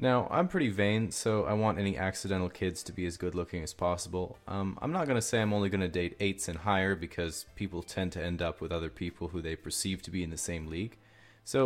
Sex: male